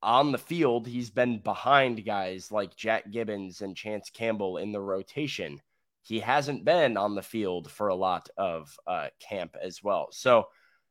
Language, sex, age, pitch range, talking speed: English, male, 20-39, 105-140 Hz, 170 wpm